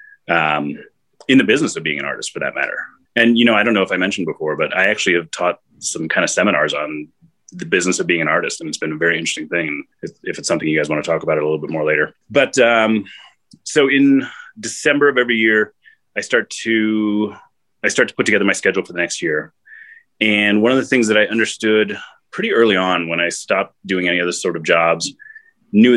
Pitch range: 90-120 Hz